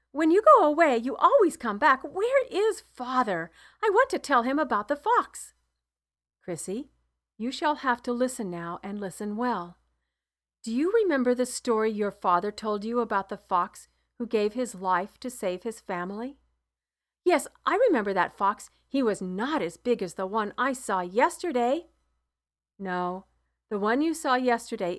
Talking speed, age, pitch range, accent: 170 wpm, 50-69, 185-260 Hz, American